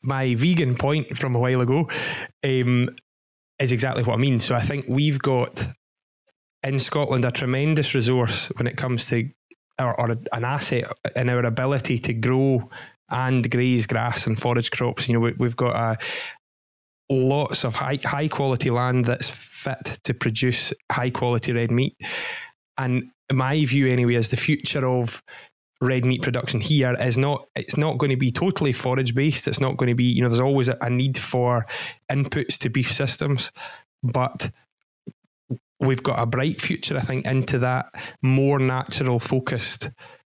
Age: 20-39